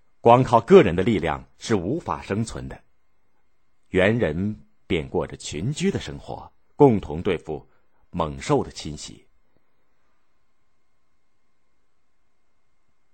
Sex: male